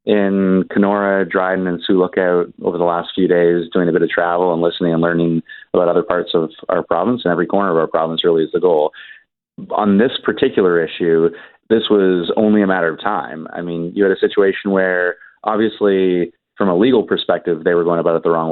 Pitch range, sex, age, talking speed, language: 95-130 Hz, male, 30-49, 215 wpm, English